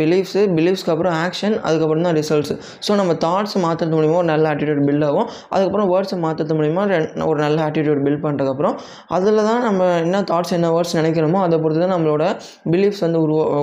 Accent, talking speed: native, 175 wpm